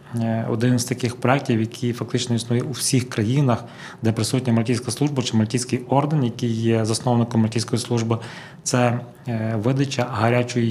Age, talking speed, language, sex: 20-39, 140 wpm, Ukrainian, male